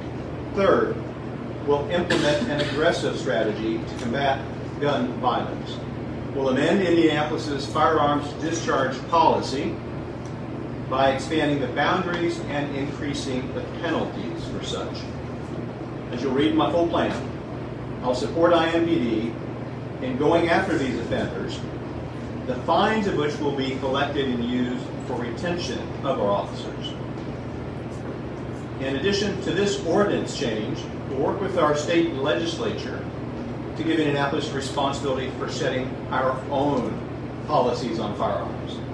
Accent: American